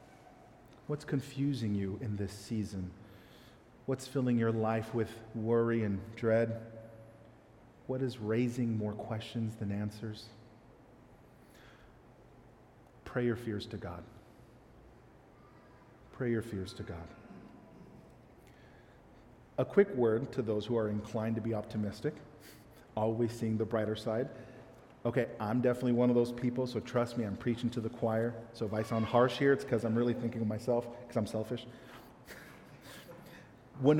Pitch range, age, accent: 110-125 Hz, 40-59, American